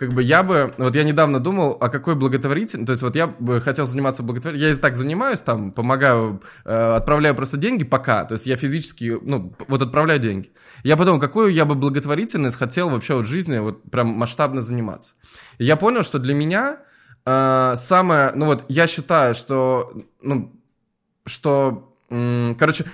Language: Russian